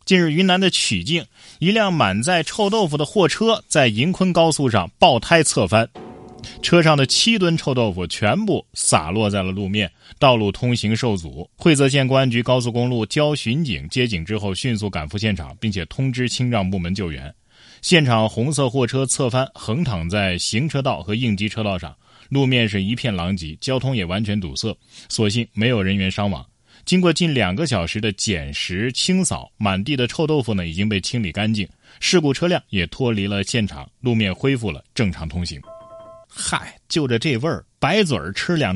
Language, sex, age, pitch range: Chinese, male, 20-39, 100-140 Hz